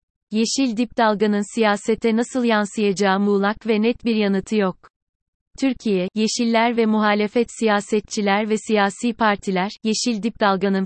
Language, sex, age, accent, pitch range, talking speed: Turkish, female, 30-49, native, 190-225 Hz, 125 wpm